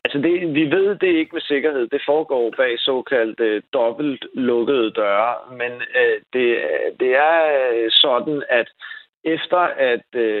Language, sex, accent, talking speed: Danish, male, native, 135 wpm